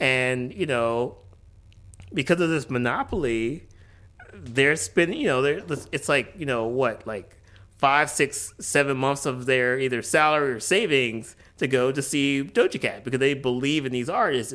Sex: male